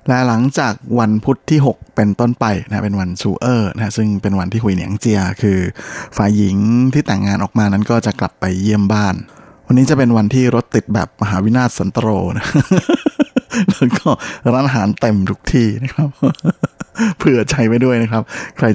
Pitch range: 105-125 Hz